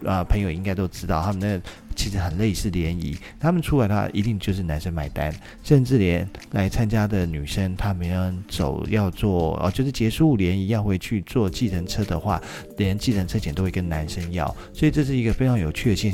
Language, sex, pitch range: Chinese, male, 90-110 Hz